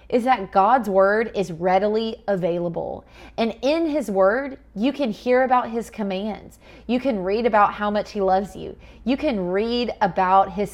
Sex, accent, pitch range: female, American, 190-250 Hz